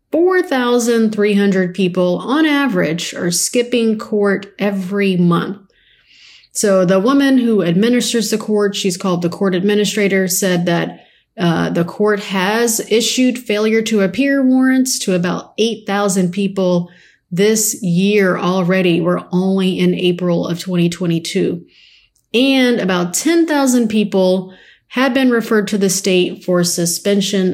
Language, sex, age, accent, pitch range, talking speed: English, female, 30-49, American, 180-220 Hz, 125 wpm